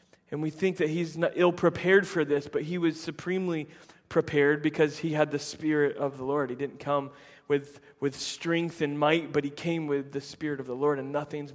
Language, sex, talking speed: English, male, 220 wpm